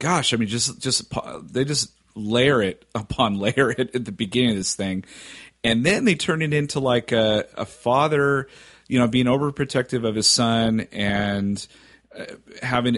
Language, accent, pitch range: English, American, 95-120 Hz